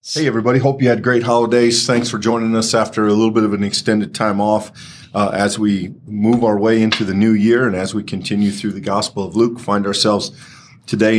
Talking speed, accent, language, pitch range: 225 wpm, American, English, 100-125 Hz